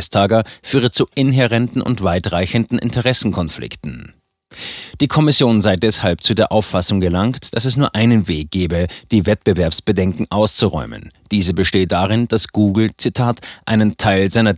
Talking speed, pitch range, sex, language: 130 wpm, 95-120 Hz, male, German